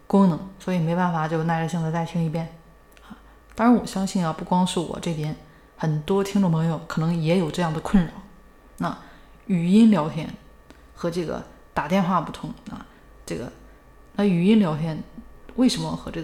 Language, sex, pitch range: Chinese, female, 160-205 Hz